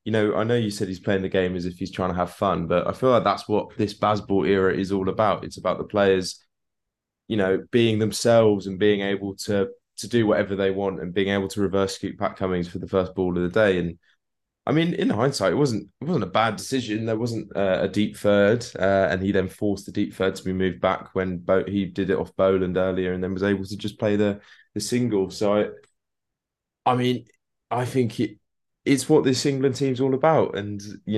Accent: British